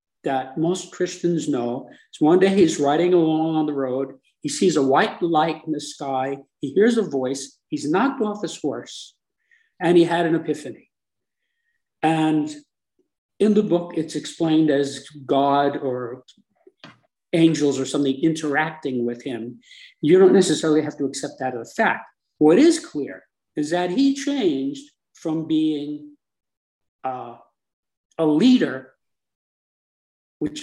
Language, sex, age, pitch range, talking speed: English, male, 50-69, 135-185 Hz, 145 wpm